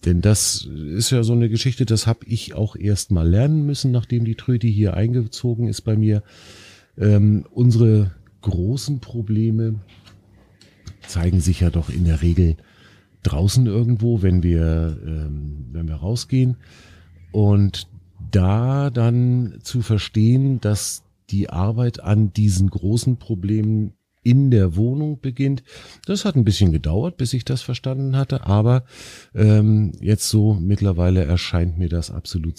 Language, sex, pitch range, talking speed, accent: German, male, 85-115 Hz, 140 wpm, German